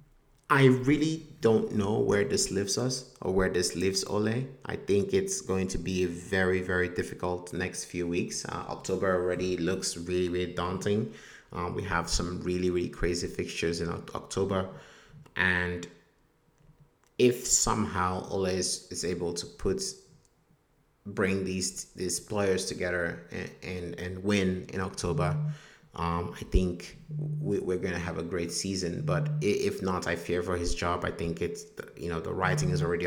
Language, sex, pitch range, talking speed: English, male, 90-115 Hz, 165 wpm